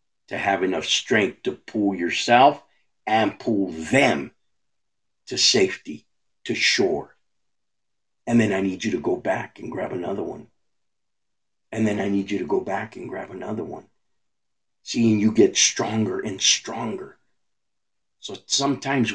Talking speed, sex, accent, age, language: 145 wpm, male, American, 50-69, English